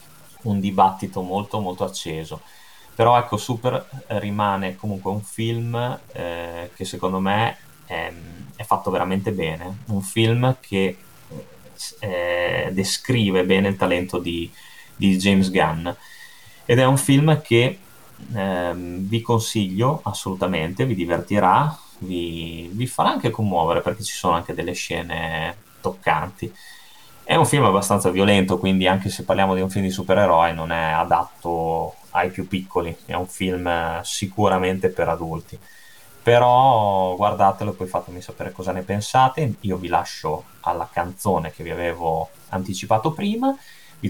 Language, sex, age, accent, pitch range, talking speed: Italian, male, 20-39, native, 90-115 Hz, 140 wpm